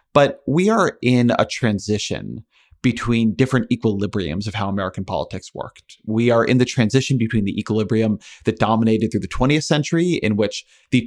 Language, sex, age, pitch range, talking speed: English, male, 30-49, 110-125 Hz, 170 wpm